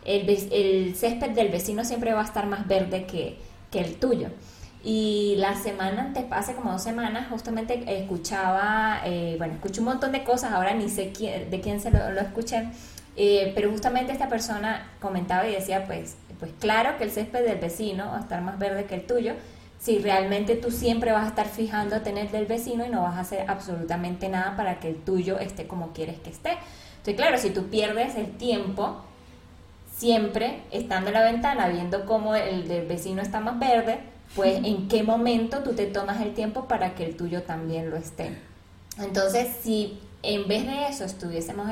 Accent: American